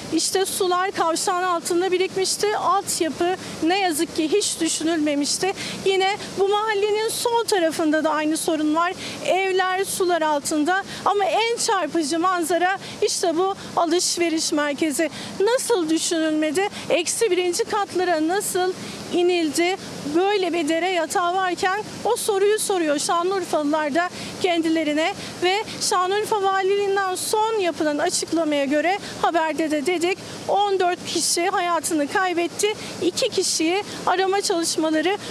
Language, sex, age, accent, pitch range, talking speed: Turkish, female, 50-69, native, 330-395 Hz, 115 wpm